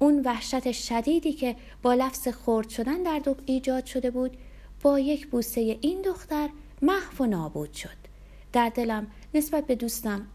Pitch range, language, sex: 185-270 Hz, Persian, female